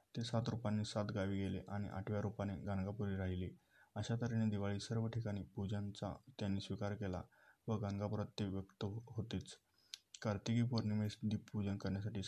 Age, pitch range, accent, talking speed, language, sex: 20-39, 100-110 Hz, native, 135 wpm, Marathi, male